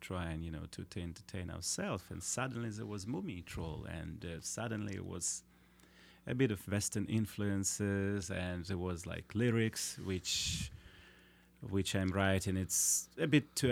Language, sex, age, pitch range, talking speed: English, male, 30-49, 85-100 Hz, 160 wpm